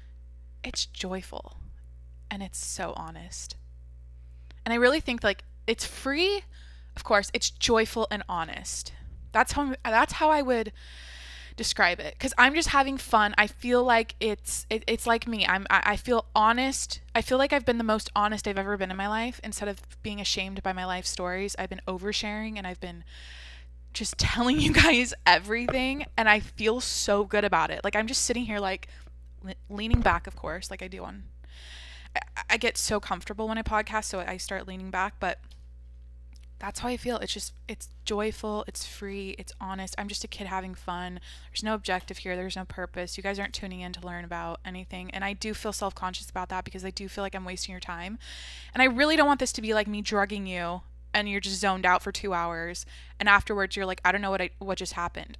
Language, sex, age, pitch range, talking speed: English, female, 20-39, 170-215 Hz, 210 wpm